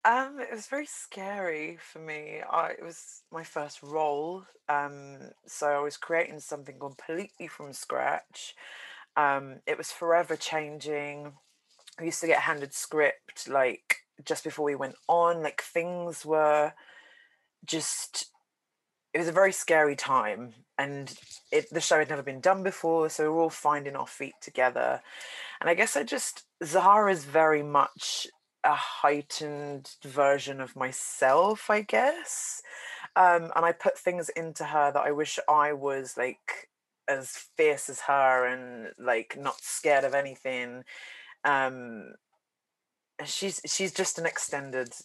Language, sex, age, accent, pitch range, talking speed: English, female, 20-39, British, 140-175 Hz, 145 wpm